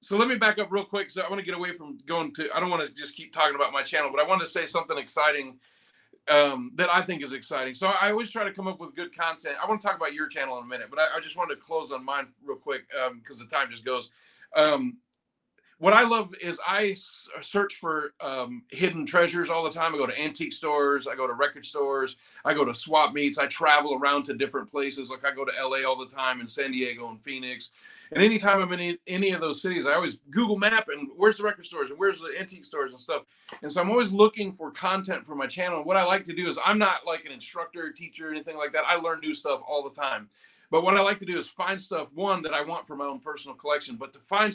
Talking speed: 275 wpm